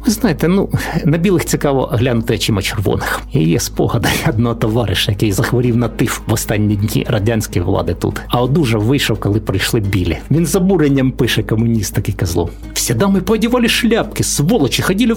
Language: Ukrainian